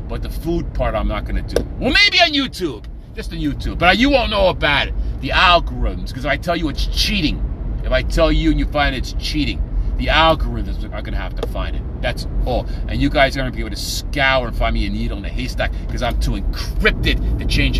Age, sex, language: 40-59, male, English